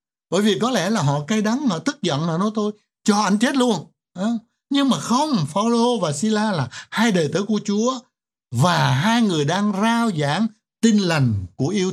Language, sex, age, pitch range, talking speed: Vietnamese, male, 60-79, 140-220 Hz, 200 wpm